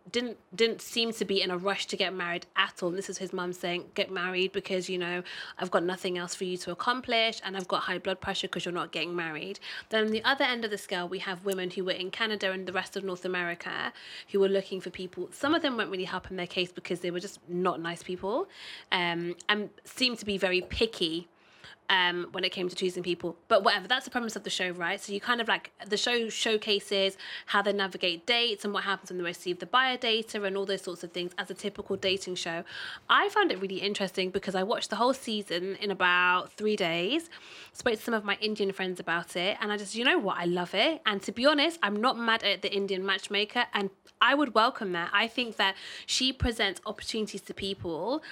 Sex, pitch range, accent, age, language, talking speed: female, 180-215 Hz, British, 20-39, English, 245 wpm